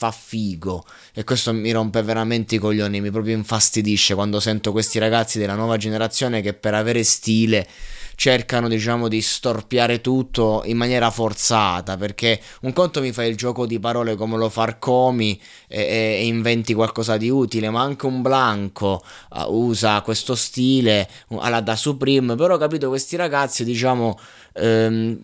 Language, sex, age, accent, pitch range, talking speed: Italian, male, 20-39, native, 110-130 Hz, 155 wpm